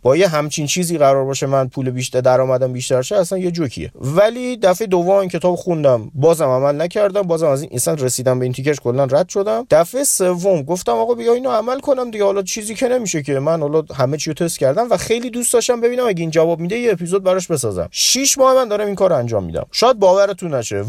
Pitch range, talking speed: 145-215 Hz, 225 wpm